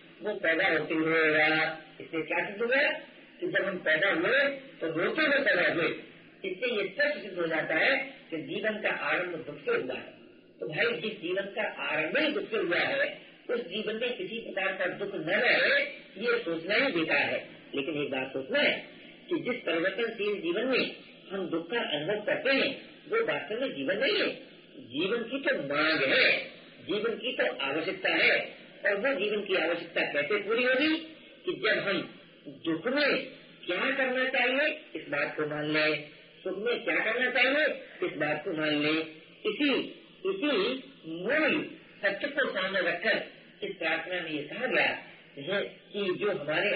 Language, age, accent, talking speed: Hindi, 50-69, native, 165 wpm